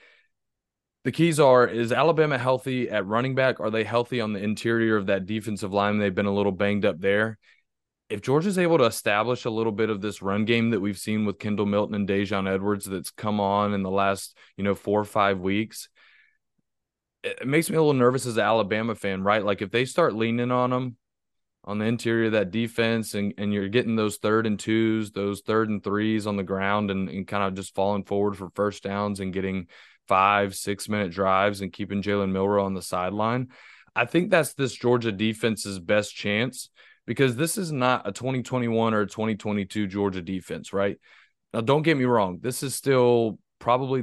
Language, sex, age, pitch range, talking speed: English, male, 20-39, 100-120 Hz, 205 wpm